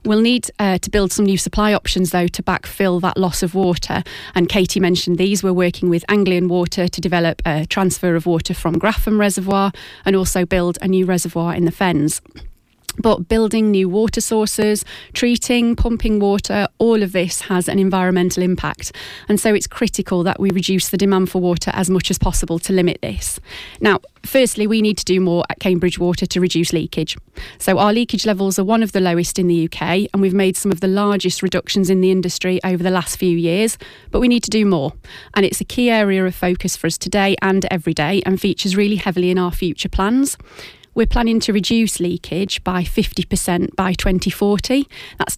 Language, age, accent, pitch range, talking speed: English, 30-49, British, 180-210 Hz, 205 wpm